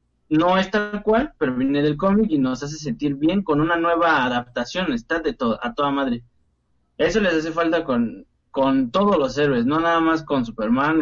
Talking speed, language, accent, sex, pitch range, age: 200 wpm, Spanish, Mexican, male, 140-230 Hz, 20-39